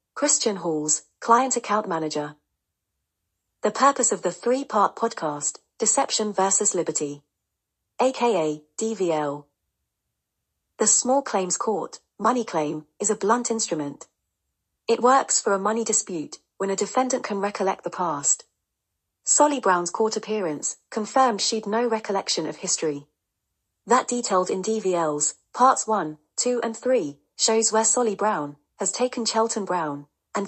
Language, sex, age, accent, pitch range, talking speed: English, female, 40-59, British, 165-235 Hz, 130 wpm